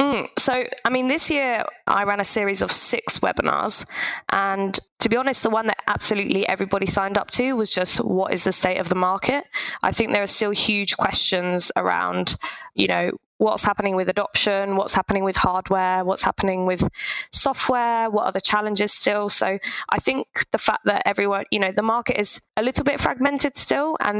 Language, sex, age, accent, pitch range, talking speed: English, female, 20-39, British, 195-225 Hz, 195 wpm